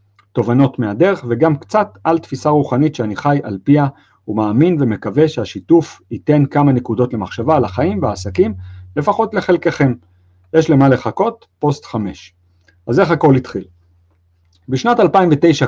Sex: male